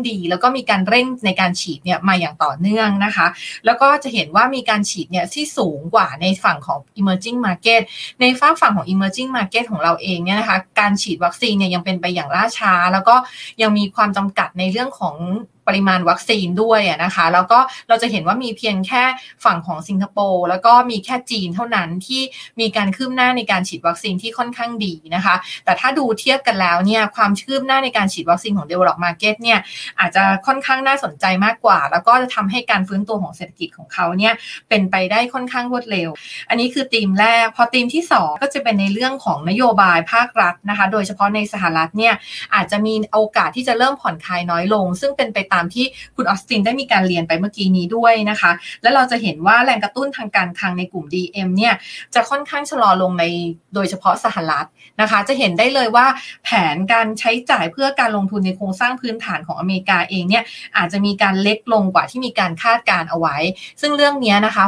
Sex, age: female, 20-39